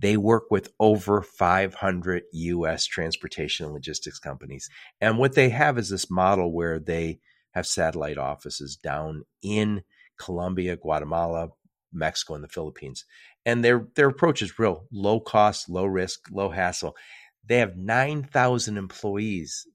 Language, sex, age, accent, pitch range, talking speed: English, male, 50-69, American, 85-115 Hz, 140 wpm